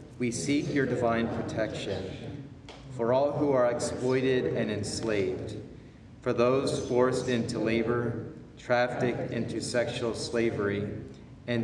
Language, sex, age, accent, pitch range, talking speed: English, male, 40-59, American, 115-130 Hz, 115 wpm